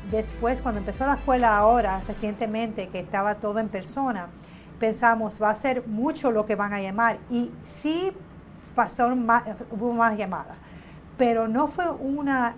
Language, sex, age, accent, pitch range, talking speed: Spanish, female, 50-69, American, 200-245 Hz, 155 wpm